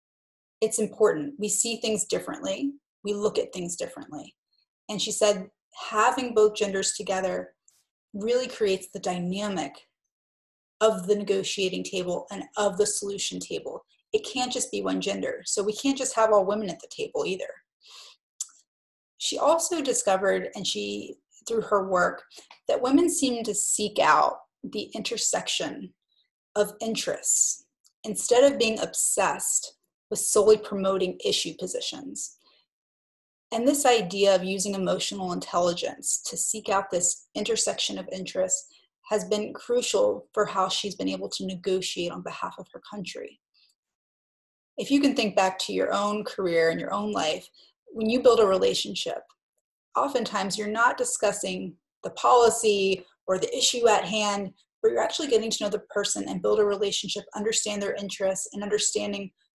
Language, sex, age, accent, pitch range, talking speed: English, female, 30-49, American, 190-240 Hz, 150 wpm